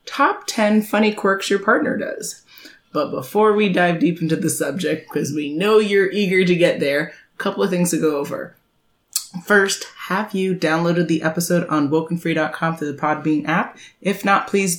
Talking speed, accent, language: 185 wpm, American, English